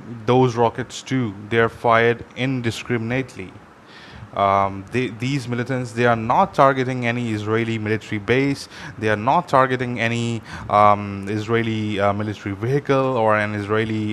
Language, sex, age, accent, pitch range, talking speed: English, male, 20-39, Indian, 110-135 Hz, 135 wpm